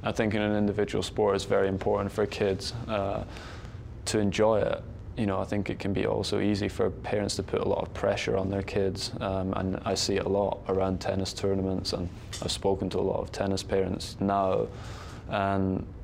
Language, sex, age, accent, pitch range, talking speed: English, male, 20-39, British, 95-105 Hz, 210 wpm